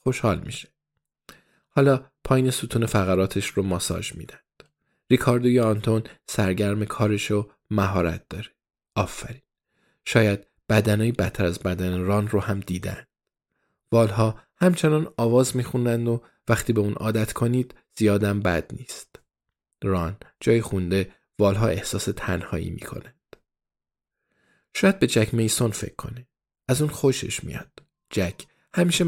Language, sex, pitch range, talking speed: Persian, male, 95-115 Hz, 120 wpm